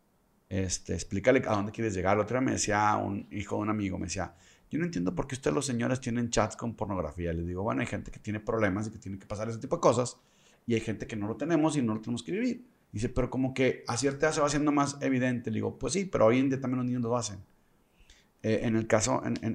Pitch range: 100-125 Hz